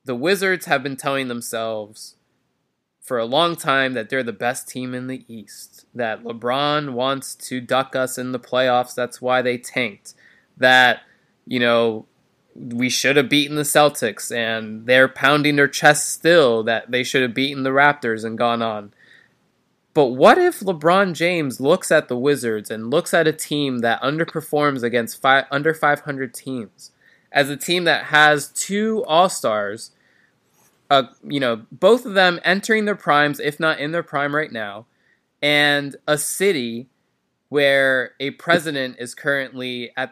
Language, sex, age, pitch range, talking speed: English, male, 20-39, 125-155 Hz, 165 wpm